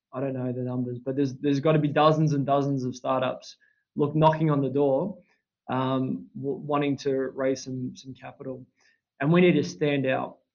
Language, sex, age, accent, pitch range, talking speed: English, male, 20-39, Australian, 135-155 Hz, 200 wpm